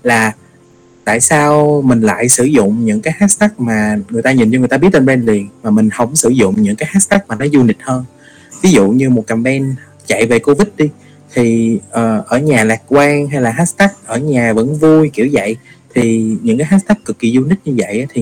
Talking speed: 225 wpm